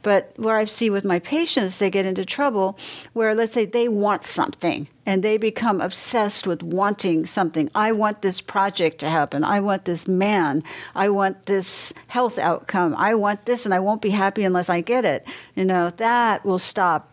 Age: 60-79